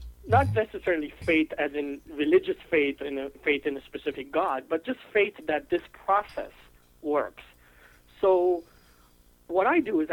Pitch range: 140-185 Hz